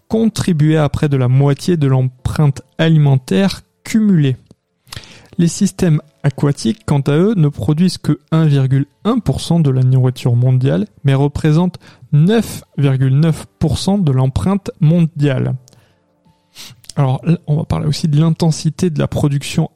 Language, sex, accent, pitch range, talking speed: French, male, French, 135-165 Hz, 120 wpm